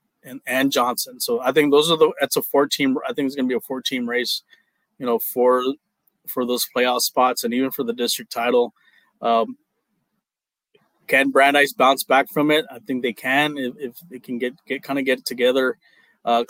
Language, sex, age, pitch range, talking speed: English, male, 20-39, 125-155 Hz, 210 wpm